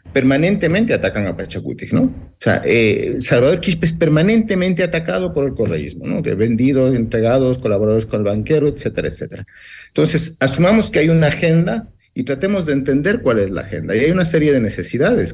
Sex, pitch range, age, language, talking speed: male, 110-150 Hz, 50-69, Spanish, 180 wpm